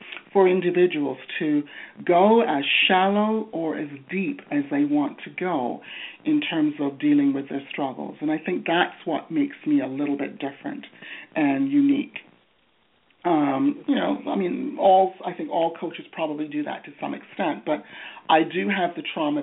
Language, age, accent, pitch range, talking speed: English, 50-69, American, 160-255 Hz, 175 wpm